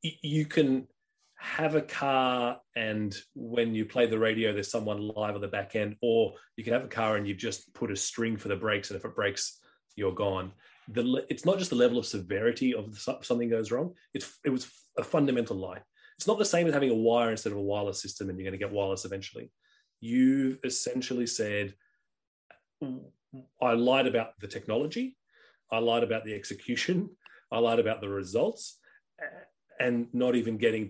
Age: 30-49